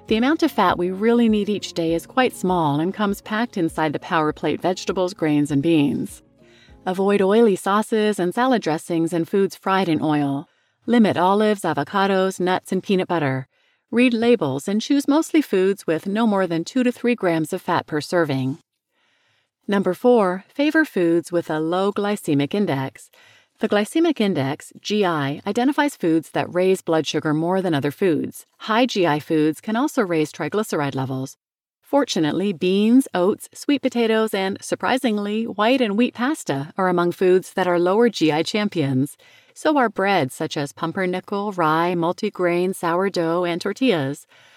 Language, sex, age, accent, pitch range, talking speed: English, female, 40-59, American, 160-220 Hz, 160 wpm